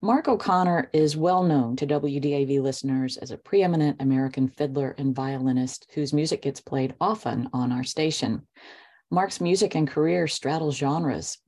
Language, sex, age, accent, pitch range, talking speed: English, female, 40-59, American, 135-160 Hz, 145 wpm